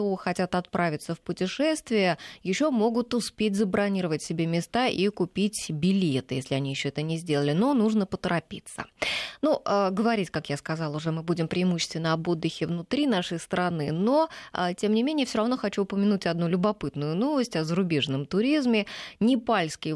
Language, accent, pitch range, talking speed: Russian, native, 160-215 Hz, 155 wpm